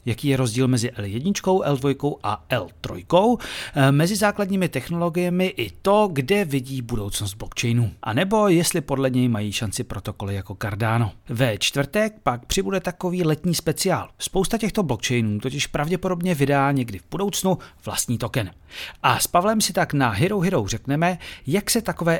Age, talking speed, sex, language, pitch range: 40-59, 155 wpm, male, Czech, 115-175 Hz